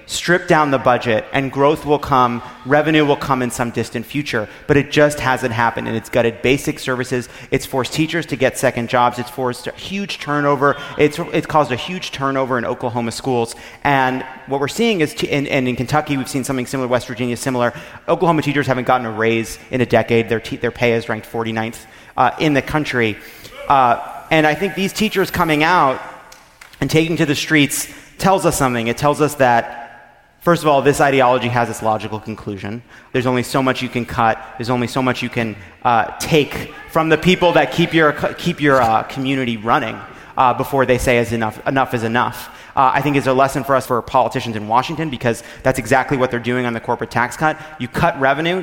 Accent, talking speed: American, 210 wpm